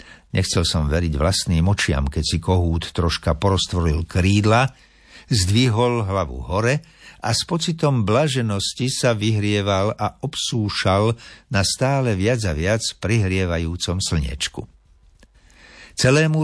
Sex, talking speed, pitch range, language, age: male, 110 wpm, 85-115 Hz, Slovak, 60-79